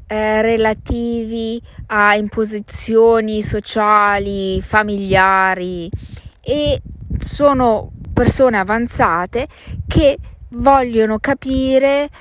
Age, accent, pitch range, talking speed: 20-39, native, 190-235 Hz, 65 wpm